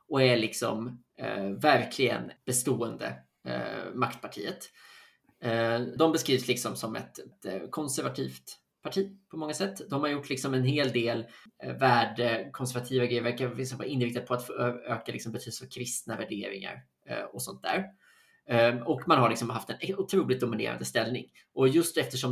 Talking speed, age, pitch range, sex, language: 155 wpm, 20-39, 120-150 Hz, male, Swedish